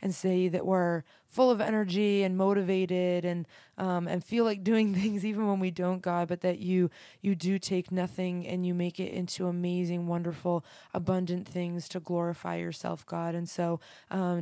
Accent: American